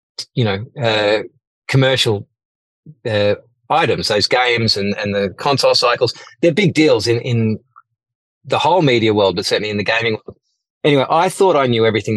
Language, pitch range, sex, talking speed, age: English, 105-125 Hz, male, 170 wpm, 30-49